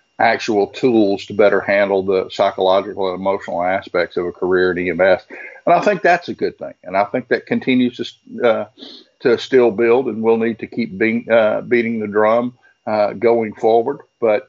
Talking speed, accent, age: 190 wpm, American, 50-69